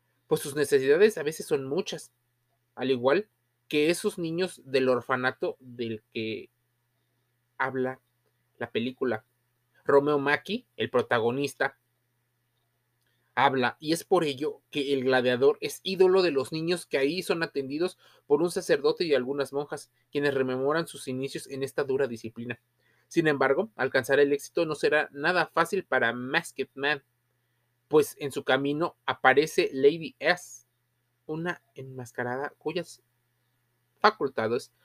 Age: 30-49